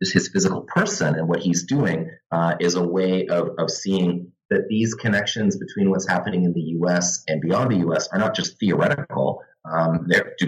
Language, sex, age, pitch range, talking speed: English, male, 30-49, 85-120 Hz, 190 wpm